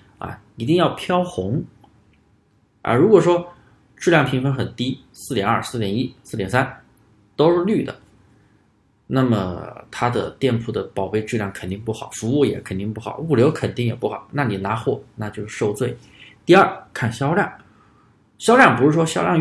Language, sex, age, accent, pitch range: Chinese, male, 20-39, native, 110-140 Hz